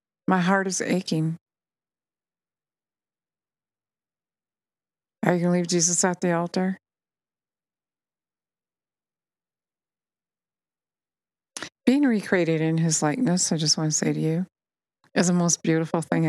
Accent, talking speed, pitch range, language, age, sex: American, 110 wpm, 160-185 Hz, English, 50-69, female